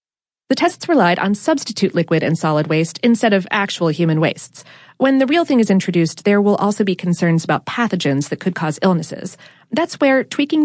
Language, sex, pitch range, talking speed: English, female, 175-255 Hz, 190 wpm